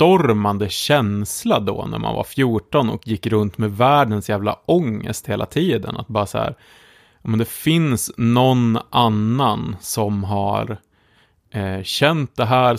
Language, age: Swedish, 30-49